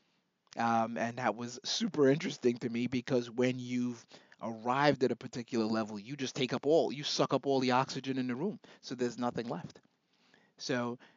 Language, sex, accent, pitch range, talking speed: English, male, American, 110-130 Hz, 190 wpm